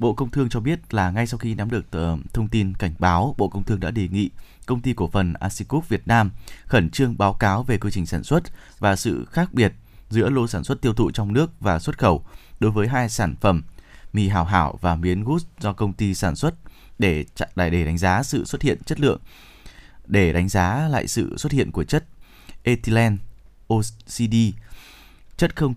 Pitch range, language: 95-120 Hz, Vietnamese